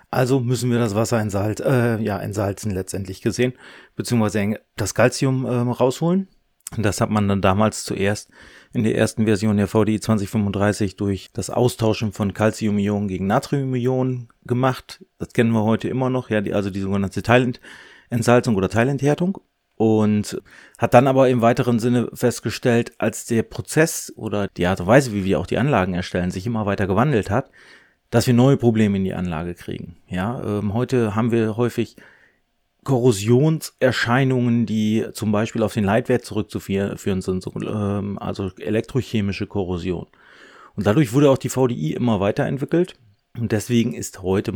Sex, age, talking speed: male, 30-49, 155 wpm